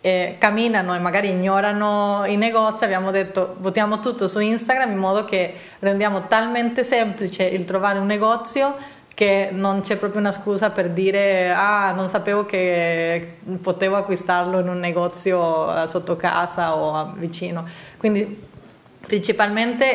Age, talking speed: 30-49, 135 wpm